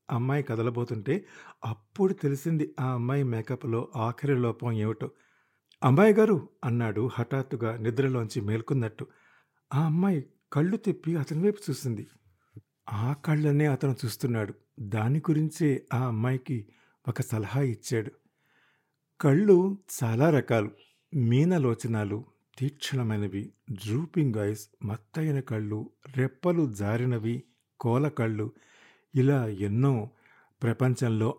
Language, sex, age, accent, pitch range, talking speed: Telugu, male, 50-69, native, 115-145 Hz, 95 wpm